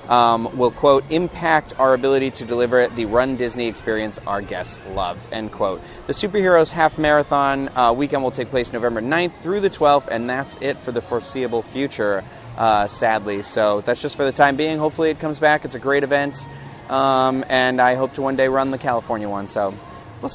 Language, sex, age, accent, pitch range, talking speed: English, male, 30-49, American, 120-155 Hz, 200 wpm